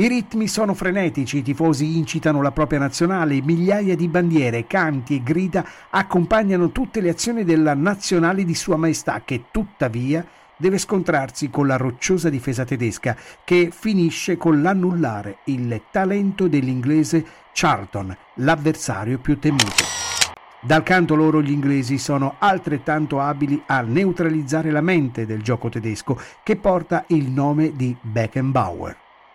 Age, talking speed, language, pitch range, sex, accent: 50-69, 135 wpm, Italian, 130-170 Hz, male, native